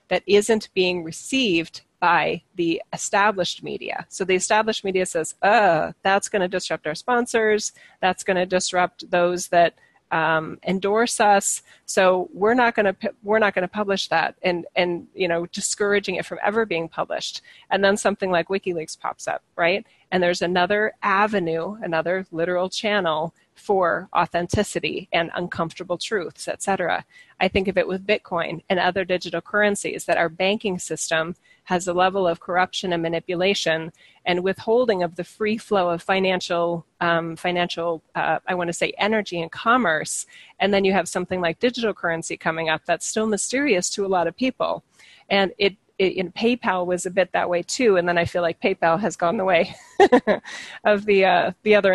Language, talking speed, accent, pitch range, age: English, 175 wpm, American, 175-205 Hz, 30-49